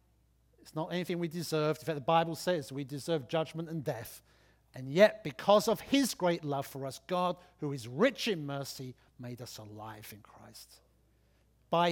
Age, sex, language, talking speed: 50-69, male, English, 180 wpm